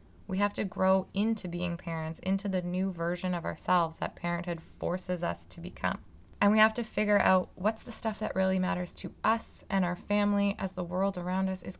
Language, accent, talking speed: English, American, 215 wpm